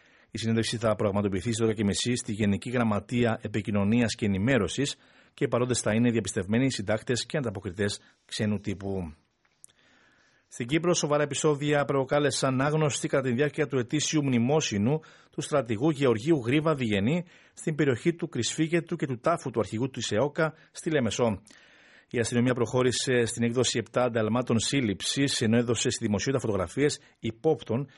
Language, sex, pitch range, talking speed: Greek, male, 115-150 Hz, 140 wpm